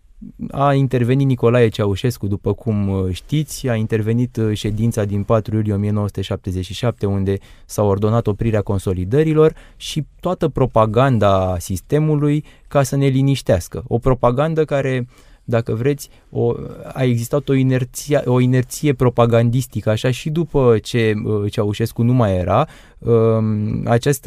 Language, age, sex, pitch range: Romanian, 20-39, male, 110-140 Hz